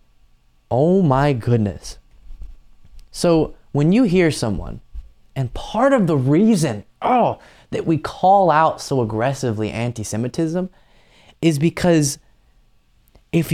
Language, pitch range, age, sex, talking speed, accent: English, 105-150 Hz, 20-39, male, 100 wpm, American